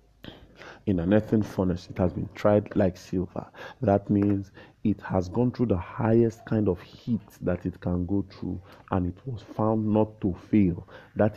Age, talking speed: 50-69, 180 wpm